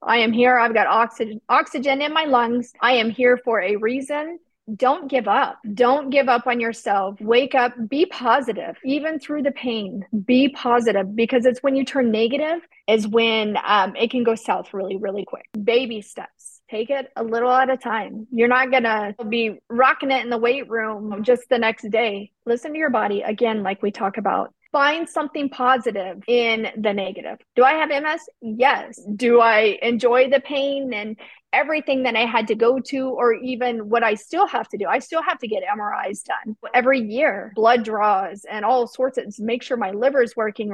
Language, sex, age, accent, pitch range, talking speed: English, female, 30-49, American, 220-260 Hz, 200 wpm